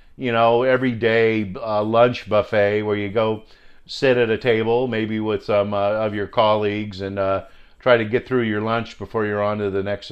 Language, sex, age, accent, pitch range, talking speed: English, male, 50-69, American, 105-125 Hz, 200 wpm